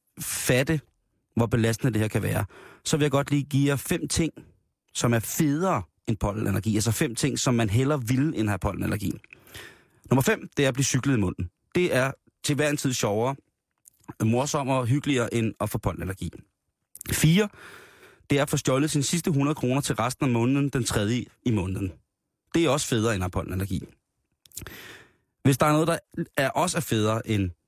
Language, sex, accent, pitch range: Danish, male, native, 105-140 Hz